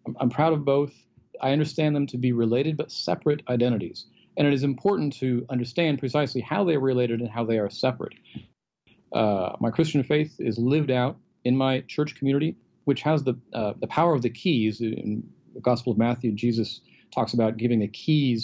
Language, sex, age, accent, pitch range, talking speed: English, male, 40-59, American, 120-150 Hz, 190 wpm